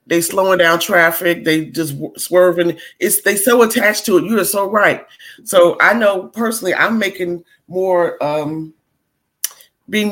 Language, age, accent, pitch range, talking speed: English, 30-49, American, 170-210 Hz, 155 wpm